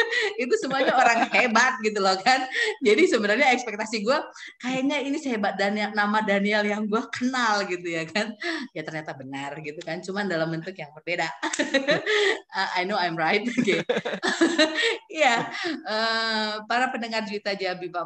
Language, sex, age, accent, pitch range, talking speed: Indonesian, female, 20-39, native, 170-245 Hz, 155 wpm